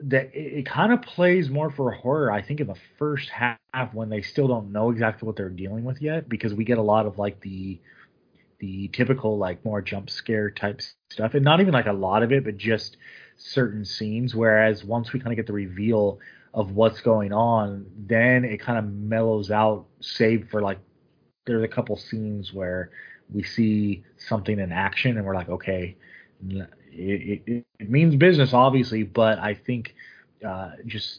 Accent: American